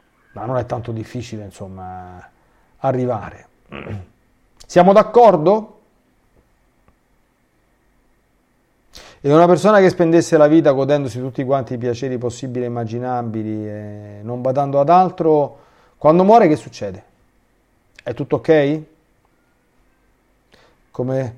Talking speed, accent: 105 wpm, native